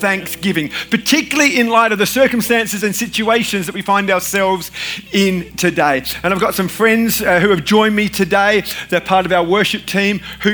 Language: English